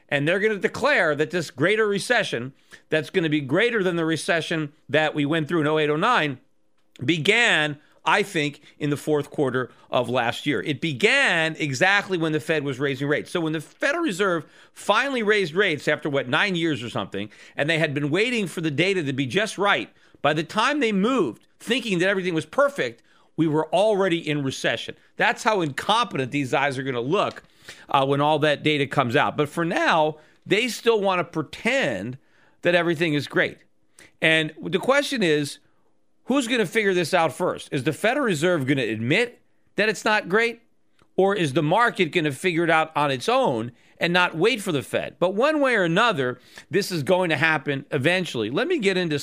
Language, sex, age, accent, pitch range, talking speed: English, male, 40-59, American, 145-195 Hz, 200 wpm